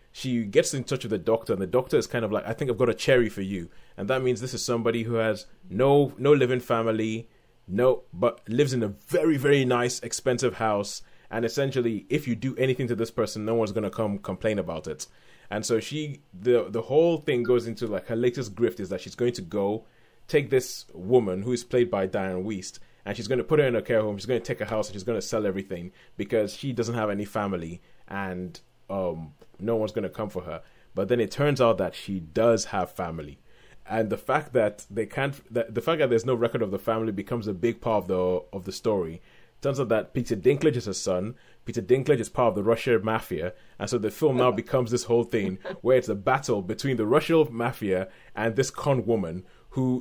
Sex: male